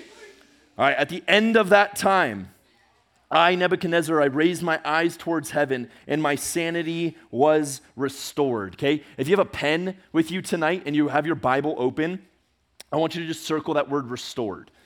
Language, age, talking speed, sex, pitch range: English, 30-49, 180 wpm, male, 135-170 Hz